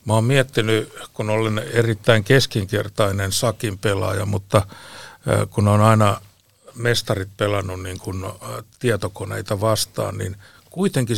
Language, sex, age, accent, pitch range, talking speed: Finnish, male, 60-79, native, 100-120 Hz, 115 wpm